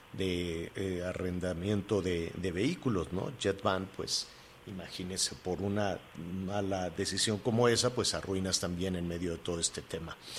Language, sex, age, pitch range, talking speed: Spanish, male, 50-69, 95-115 Hz, 145 wpm